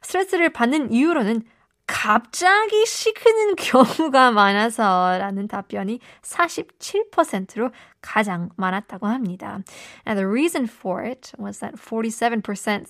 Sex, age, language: female, 20-39, Korean